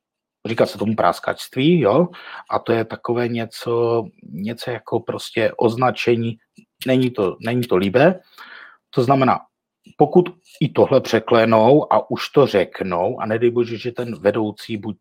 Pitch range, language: 110-130 Hz, Czech